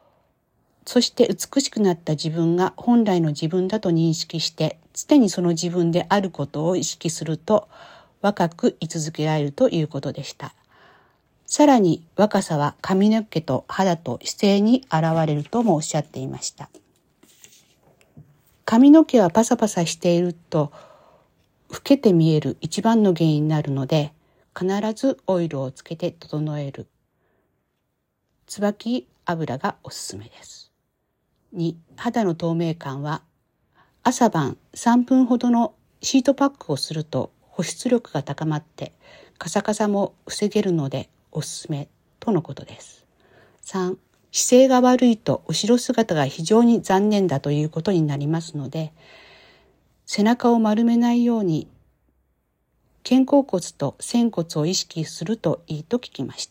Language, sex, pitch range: Japanese, female, 155-225 Hz